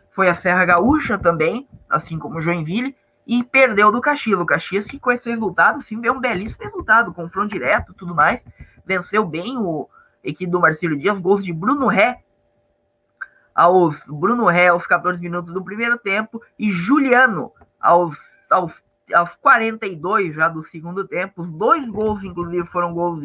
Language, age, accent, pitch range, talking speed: Portuguese, 20-39, Brazilian, 175-230 Hz, 170 wpm